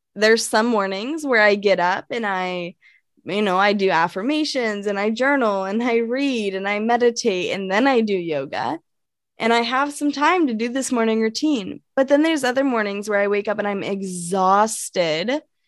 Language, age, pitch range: English, 10-29, 200-245 Hz